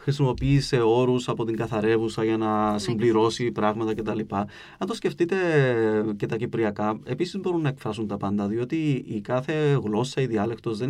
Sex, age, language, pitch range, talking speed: male, 30-49, Greek, 110-150 Hz, 165 wpm